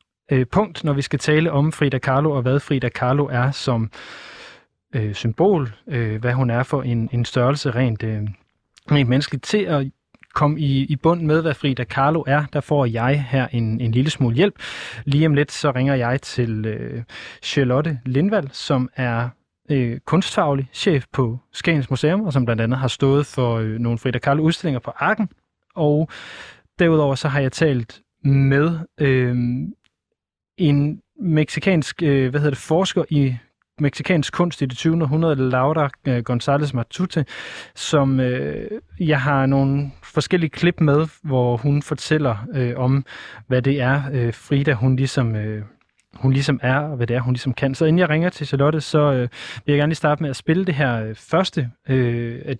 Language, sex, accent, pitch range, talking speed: Danish, male, native, 125-150 Hz, 170 wpm